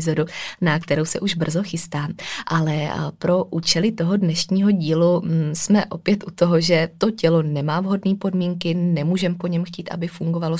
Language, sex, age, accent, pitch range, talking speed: Czech, female, 20-39, native, 160-185 Hz, 160 wpm